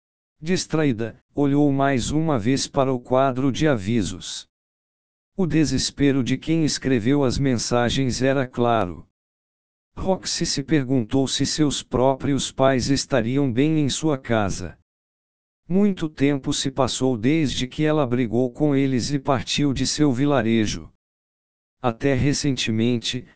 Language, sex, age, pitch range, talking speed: Portuguese, male, 60-79, 120-145 Hz, 125 wpm